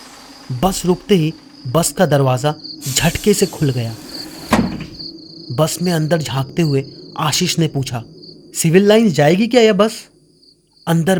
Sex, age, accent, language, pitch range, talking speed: male, 30-49, native, Hindi, 130-185 Hz, 135 wpm